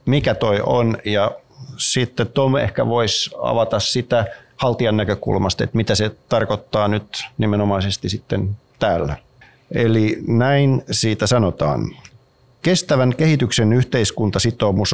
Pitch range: 95-120 Hz